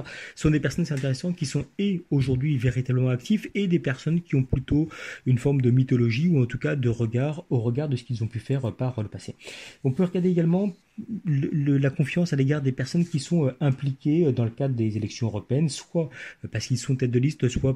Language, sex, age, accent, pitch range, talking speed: French, male, 40-59, French, 110-140 Hz, 235 wpm